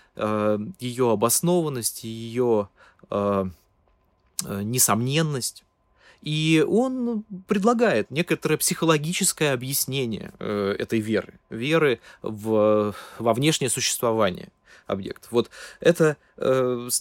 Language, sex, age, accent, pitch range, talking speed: Russian, male, 20-39, native, 115-165 Hz, 75 wpm